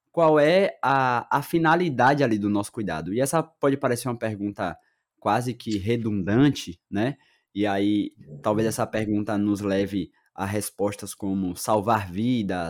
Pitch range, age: 105-130 Hz, 20-39